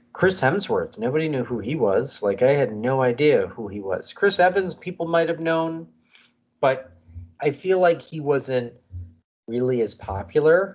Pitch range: 115-170 Hz